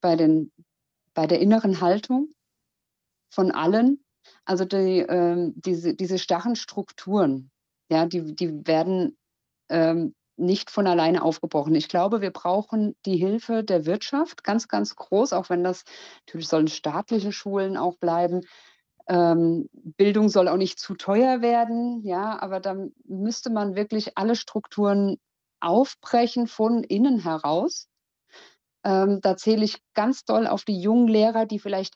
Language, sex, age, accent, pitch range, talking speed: English, female, 50-69, German, 170-215 Hz, 140 wpm